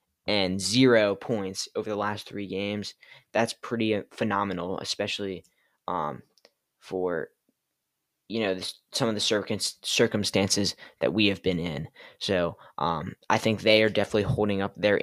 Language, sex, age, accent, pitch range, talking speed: English, male, 10-29, American, 95-110 Hz, 150 wpm